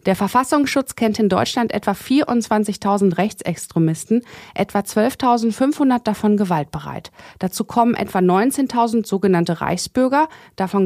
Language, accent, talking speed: German, German, 105 wpm